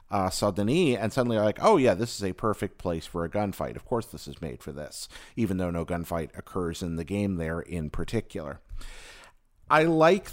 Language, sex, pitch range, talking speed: English, male, 95-120 Hz, 205 wpm